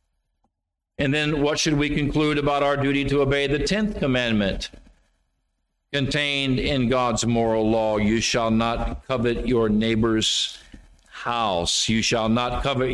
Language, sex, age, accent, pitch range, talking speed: English, male, 50-69, American, 125-170 Hz, 140 wpm